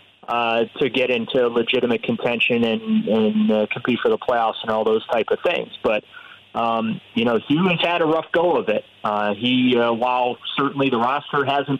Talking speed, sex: 195 wpm, male